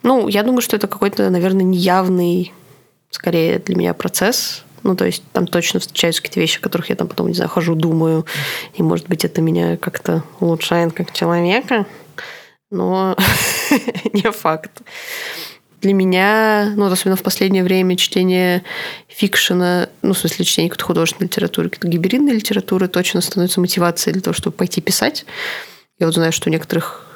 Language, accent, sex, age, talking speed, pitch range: Russian, native, female, 20-39, 160 wpm, 170-205 Hz